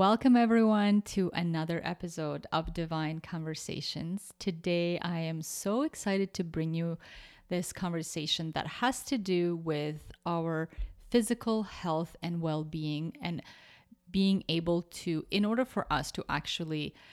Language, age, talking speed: English, 30-49, 135 wpm